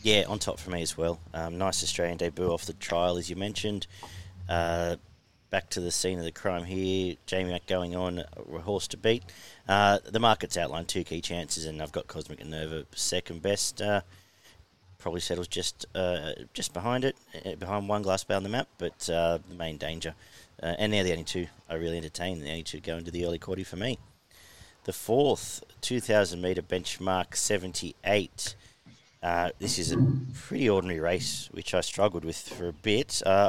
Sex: male